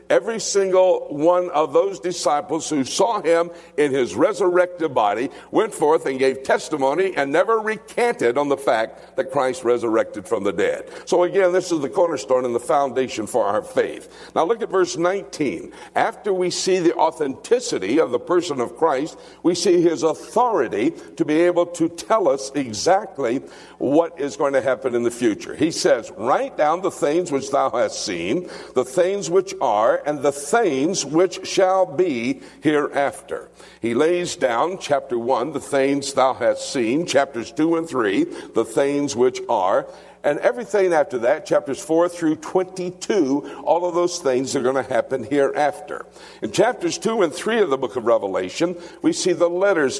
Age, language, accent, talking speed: 60-79, English, American, 175 wpm